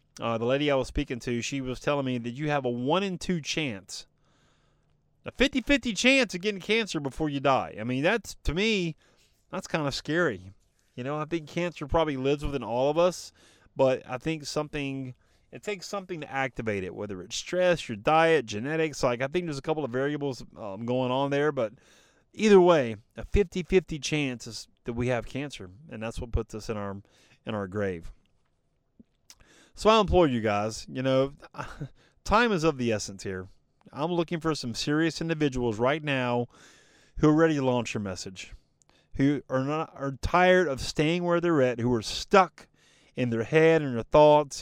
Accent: American